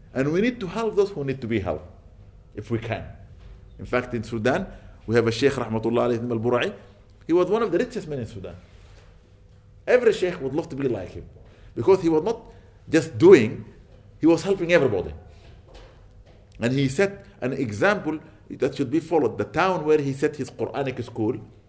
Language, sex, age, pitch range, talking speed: English, male, 50-69, 100-150 Hz, 190 wpm